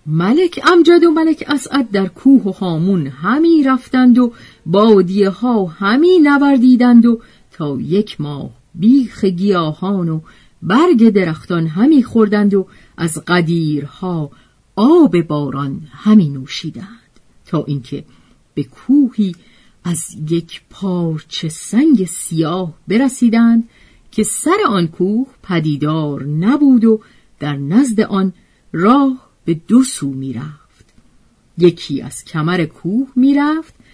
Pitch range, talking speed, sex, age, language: 165-260 Hz, 115 wpm, female, 40-59, Persian